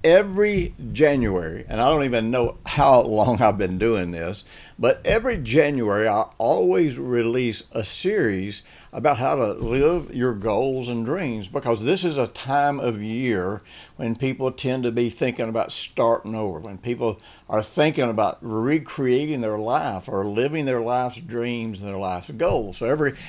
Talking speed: 165 wpm